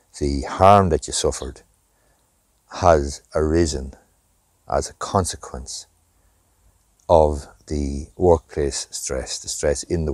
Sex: male